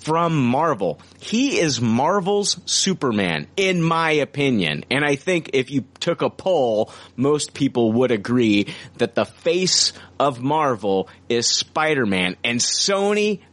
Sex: male